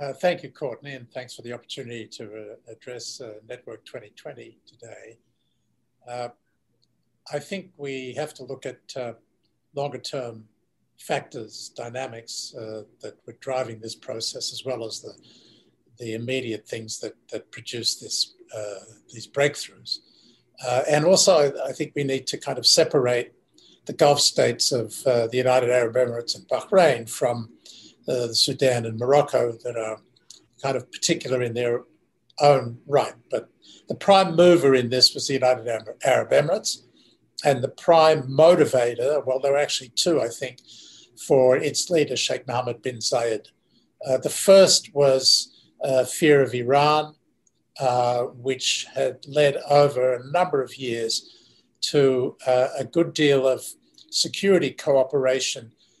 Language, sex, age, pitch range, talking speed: English, male, 60-79, 120-145 Hz, 150 wpm